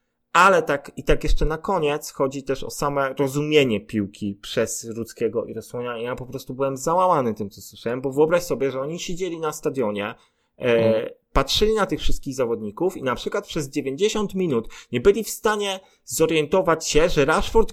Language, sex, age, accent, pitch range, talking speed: Polish, male, 30-49, native, 125-170 Hz, 180 wpm